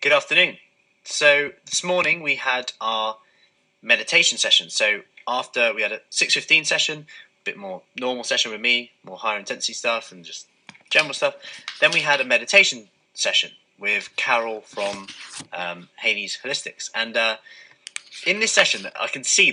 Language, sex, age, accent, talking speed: English, male, 20-39, British, 160 wpm